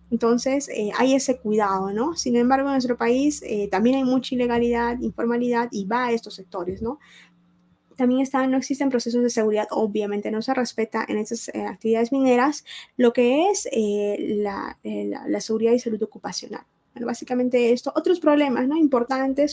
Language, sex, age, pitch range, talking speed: Spanish, female, 20-39, 215-260 Hz, 180 wpm